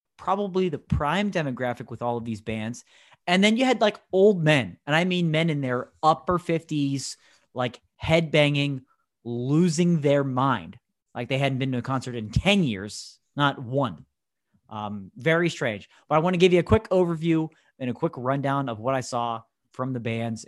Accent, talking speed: American, 190 wpm